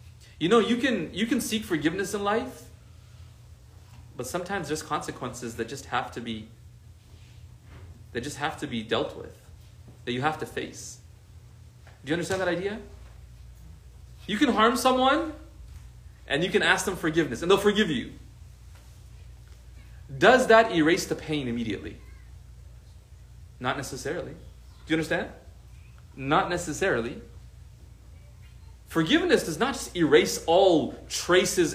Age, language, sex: 30-49, English, male